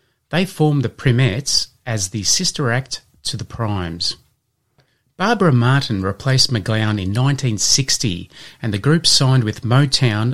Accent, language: Australian, English